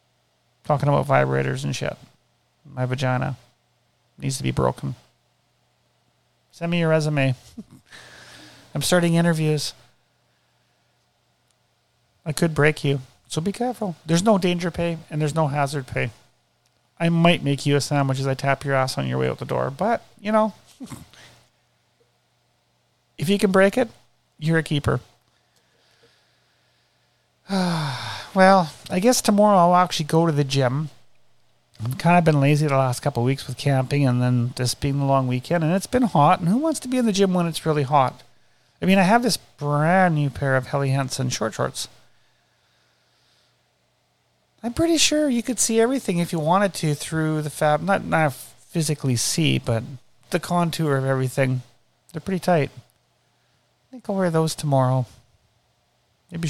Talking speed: 160 wpm